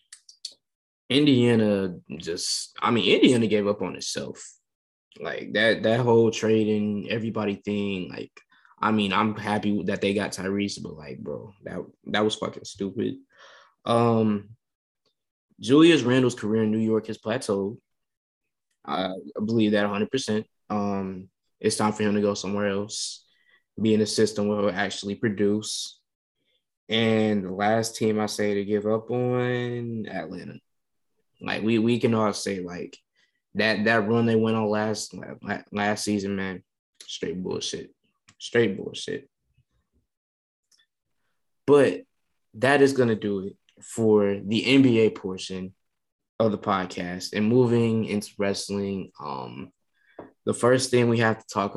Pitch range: 100-115 Hz